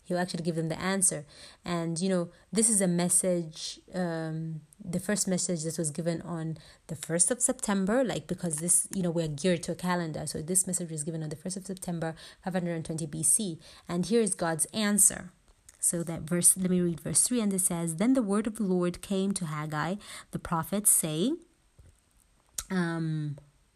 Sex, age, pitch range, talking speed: female, 30-49, 165-195 Hz, 190 wpm